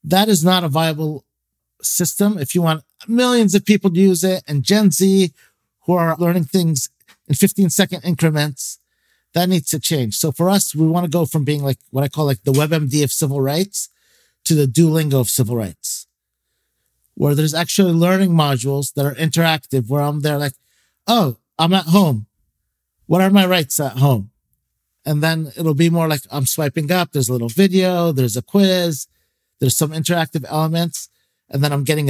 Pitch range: 135-170 Hz